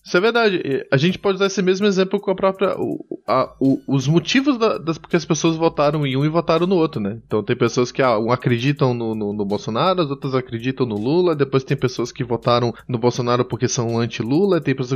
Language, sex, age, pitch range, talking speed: Portuguese, male, 20-39, 125-165 Hz, 235 wpm